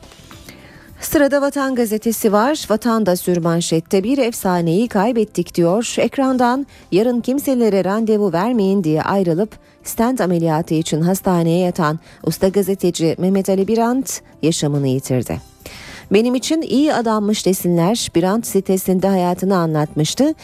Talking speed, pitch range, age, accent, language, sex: 110 wpm, 165-220 Hz, 40-59, native, Turkish, female